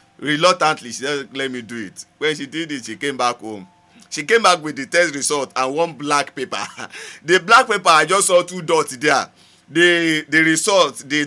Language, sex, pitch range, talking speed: English, male, 145-200 Hz, 210 wpm